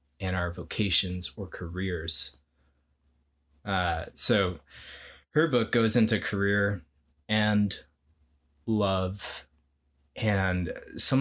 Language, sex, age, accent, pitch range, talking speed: English, male, 20-39, American, 80-110 Hz, 85 wpm